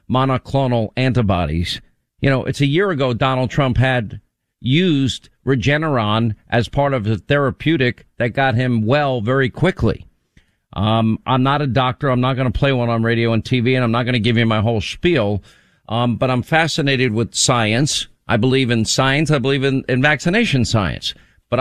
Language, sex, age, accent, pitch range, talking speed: English, male, 50-69, American, 115-145 Hz, 185 wpm